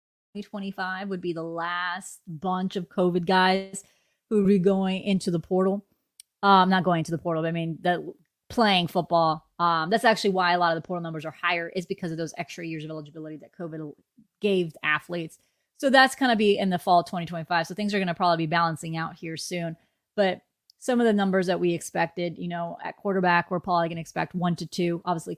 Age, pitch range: 20-39, 165-190 Hz